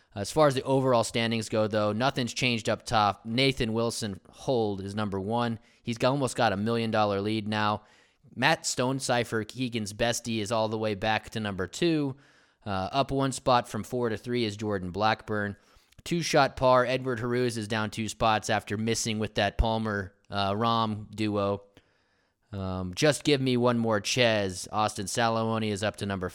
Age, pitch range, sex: 20-39, 105-125 Hz, male